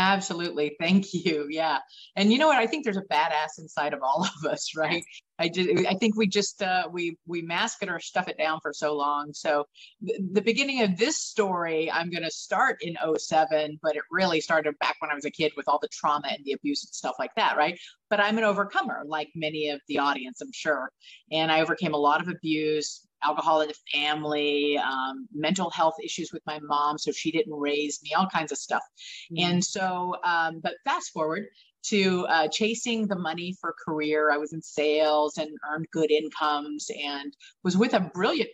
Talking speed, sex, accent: 210 wpm, female, American